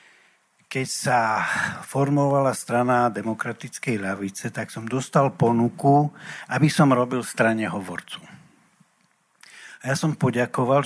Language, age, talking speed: Slovak, 60-79, 105 wpm